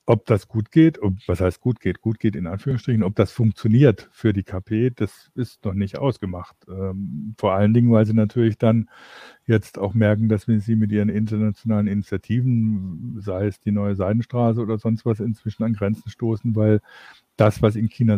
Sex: male